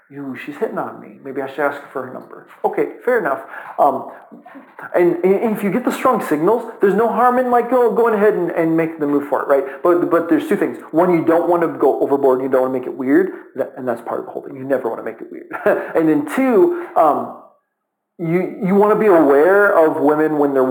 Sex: male